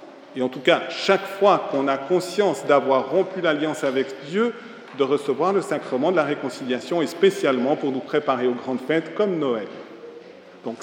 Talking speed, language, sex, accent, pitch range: 175 wpm, French, male, French, 135-205 Hz